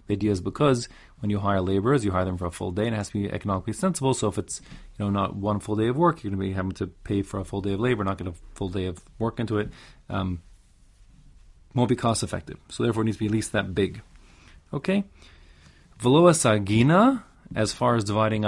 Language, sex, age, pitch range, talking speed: English, male, 30-49, 95-125 Hz, 255 wpm